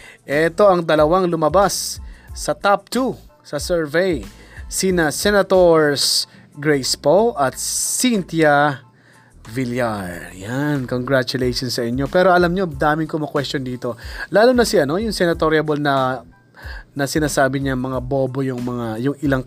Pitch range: 130-165 Hz